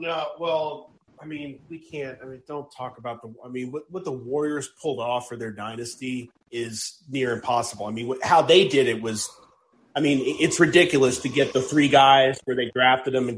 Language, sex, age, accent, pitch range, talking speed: English, male, 30-49, American, 125-160 Hz, 230 wpm